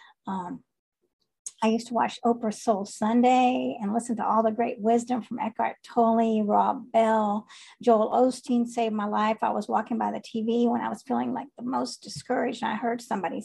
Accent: American